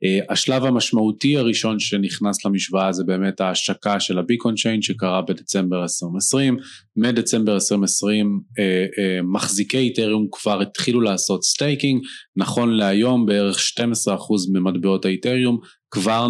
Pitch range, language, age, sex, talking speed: 95-125 Hz, Hebrew, 30-49, male, 120 wpm